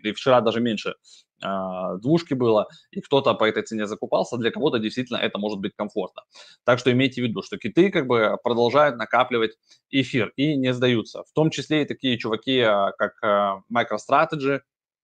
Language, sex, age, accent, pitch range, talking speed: Russian, male, 20-39, native, 110-135 Hz, 170 wpm